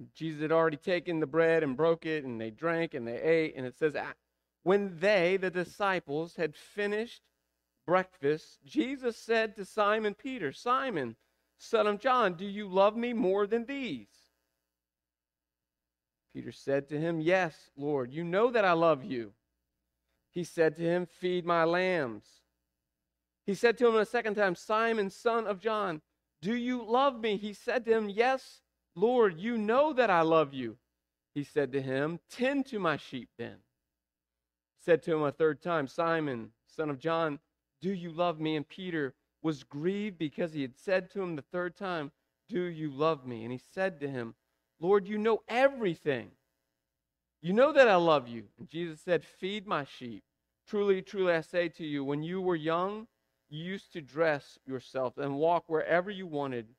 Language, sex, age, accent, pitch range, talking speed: English, male, 40-59, American, 135-200 Hz, 180 wpm